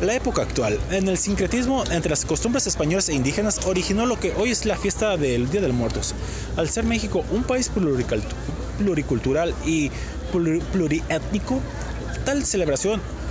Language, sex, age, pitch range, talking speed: Spanish, male, 30-49, 135-210 Hz, 150 wpm